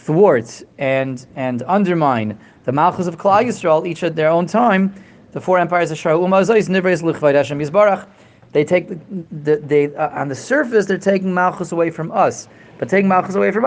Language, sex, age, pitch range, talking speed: English, male, 30-49, 135-185 Hz, 160 wpm